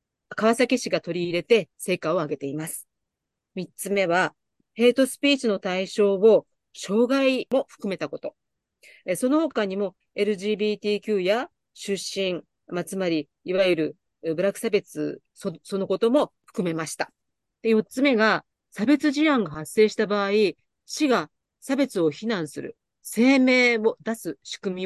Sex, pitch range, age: female, 175-245 Hz, 40-59